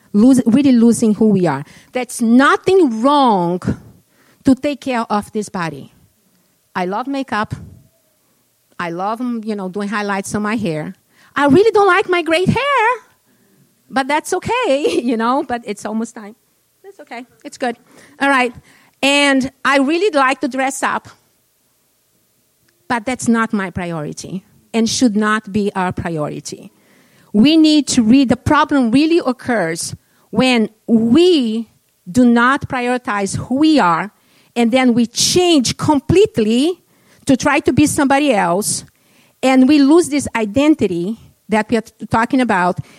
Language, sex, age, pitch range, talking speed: English, female, 50-69, 210-290 Hz, 145 wpm